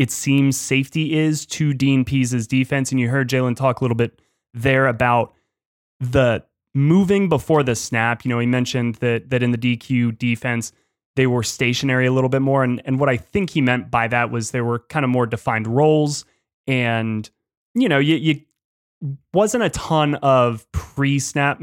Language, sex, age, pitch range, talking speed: English, male, 20-39, 120-140 Hz, 185 wpm